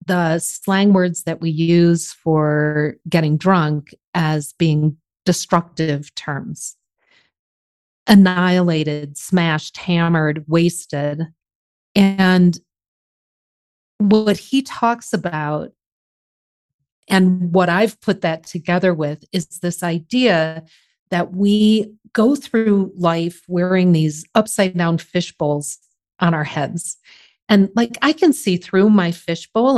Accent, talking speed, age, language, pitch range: American, 110 wpm, 40-59, English, 165-220 Hz